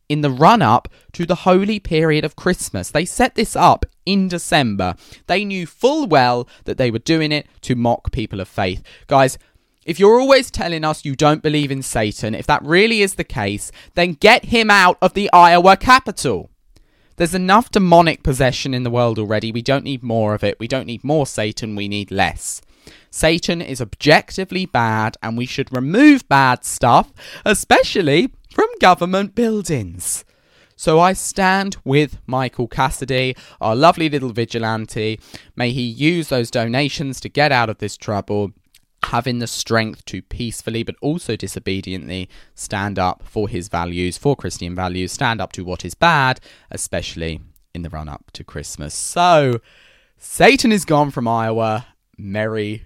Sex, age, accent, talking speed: male, 20-39, British, 165 wpm